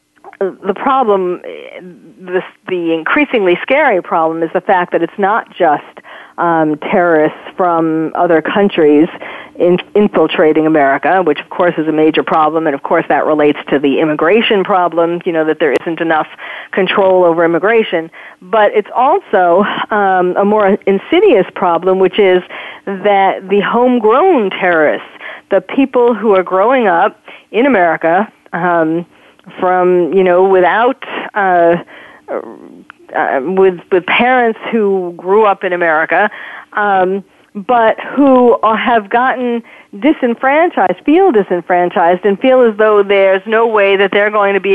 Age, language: 40-59, English